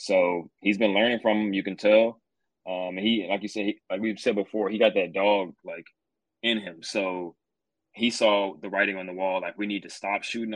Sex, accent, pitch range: male, American, 95-110 Hz